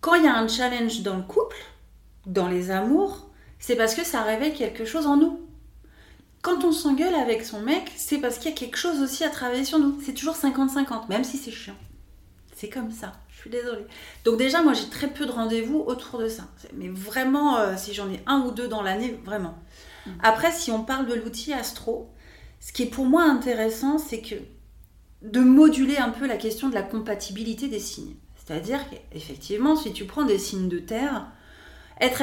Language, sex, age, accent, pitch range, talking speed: French, female, 30-49, French, 205-285 Hz, 205 wpm